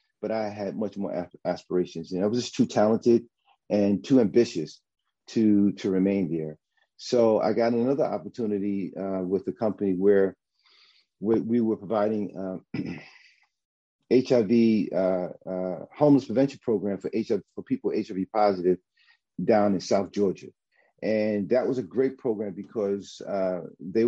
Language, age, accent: English, 40-59, American